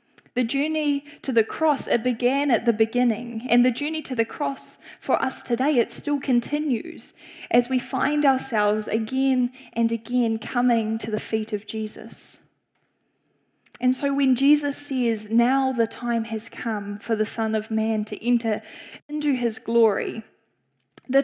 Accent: Australian